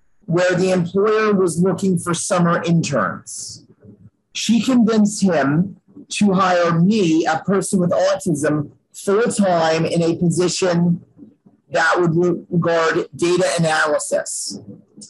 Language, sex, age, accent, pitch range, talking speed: English, male, 40-59, American, 160-195 Hz, 105 wpm